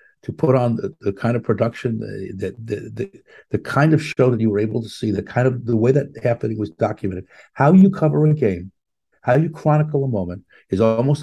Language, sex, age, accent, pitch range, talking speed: English, male, 60-79, American, 105-130 Hz, 225 wpm